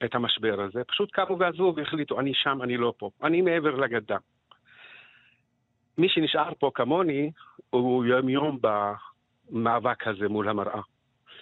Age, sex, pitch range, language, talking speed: 50-69, male, 115-135 Hz, Hebrew, 135 wpm